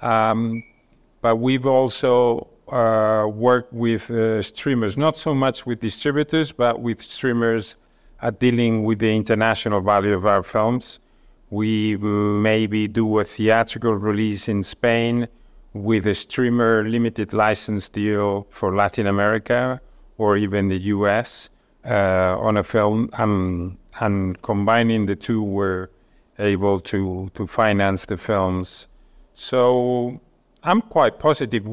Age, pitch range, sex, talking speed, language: 50-69, 100-120 Hz, male, 125 wpm, English